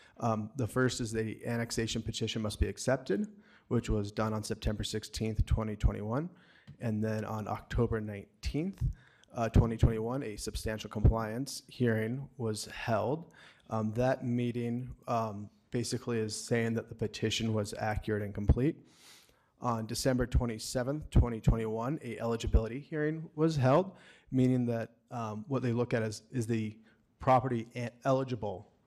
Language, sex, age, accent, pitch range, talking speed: English, male, 30-49, American, 110-130 Hz, 135 wpm